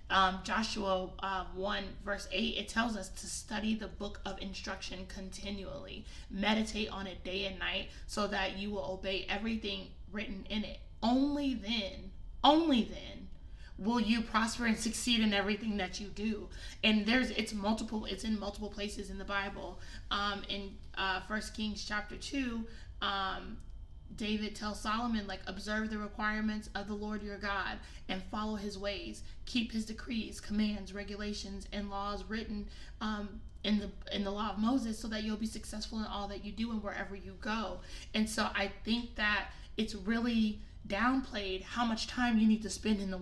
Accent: American